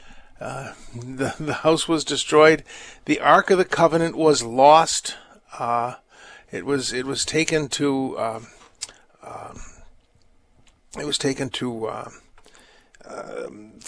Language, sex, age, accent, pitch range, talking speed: English, male, 50-69, American, 130-170 Hz, 120 wpm